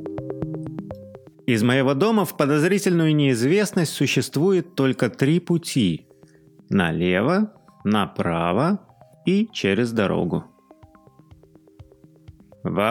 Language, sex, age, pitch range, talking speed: Russian, male, 30-49, 105-150 Hz, 75 wpm